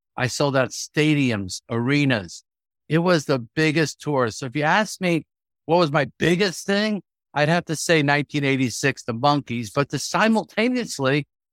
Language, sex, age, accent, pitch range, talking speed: English, male, 50-69, American, 130-165 Hz, 155 wpm